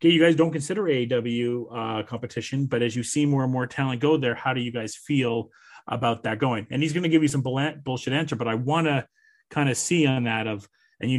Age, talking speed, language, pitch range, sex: 30-49, 245 wpm, English, 125-160 Hz, male